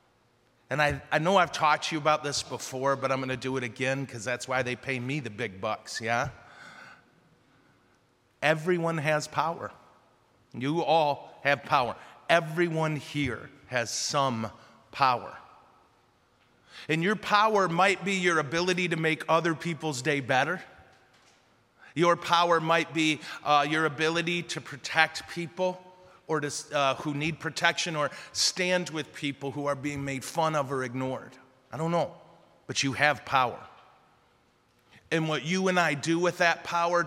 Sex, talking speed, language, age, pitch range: male, 155 wpm, English, 40-59, 140-170 Hz